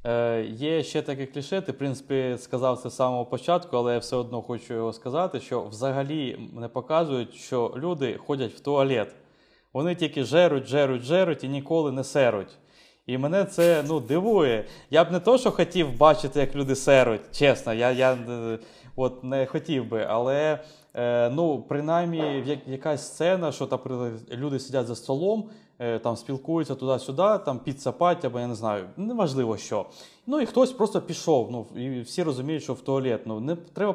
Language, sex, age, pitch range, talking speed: Ukrainian, male, 20-39, 125-160 Hz, 170 wpm